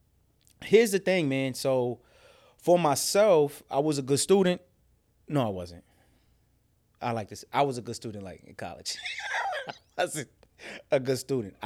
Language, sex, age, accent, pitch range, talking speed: English, male, 20-39, American, 115-145 Hz, 160 wpm